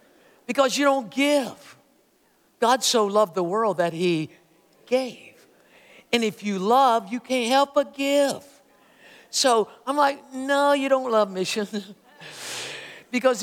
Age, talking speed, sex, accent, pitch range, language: 60-79, 135 wpm, male, American, 185-250 Hz, English